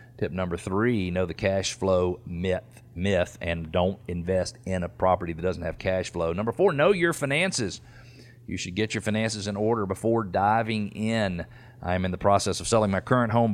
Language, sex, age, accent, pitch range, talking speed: English, male, 40-59, American, 95-115 Hz, 195 wpm